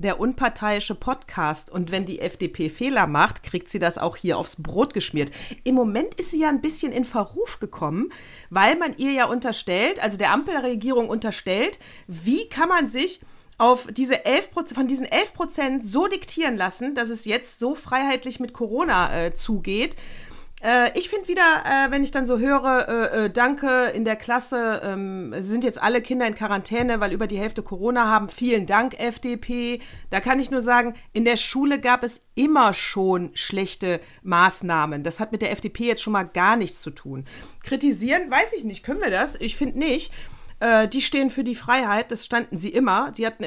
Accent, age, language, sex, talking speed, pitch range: German, 40-59, German, female, 185 wpm, 200-255 Hz